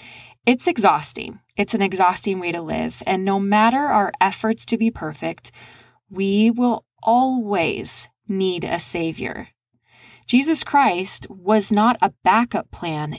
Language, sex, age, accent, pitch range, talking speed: English, female, 20-39, American, 180-230 Hz, 130 wpm